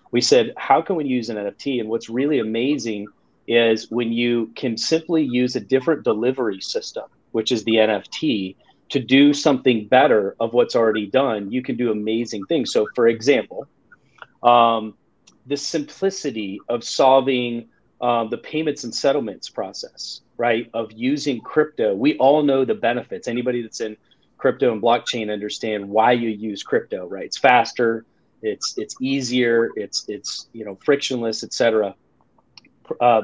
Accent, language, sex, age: American, English, male, 30-49